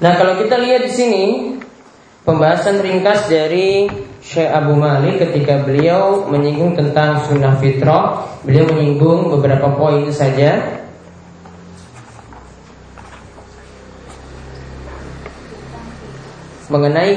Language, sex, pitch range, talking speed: Malay, male, 140-180 Hz, 85 wpm